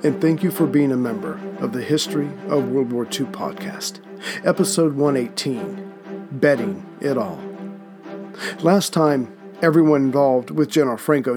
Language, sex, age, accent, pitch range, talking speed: English, male, 50-69, American, 135-165 Hz, 145 wpm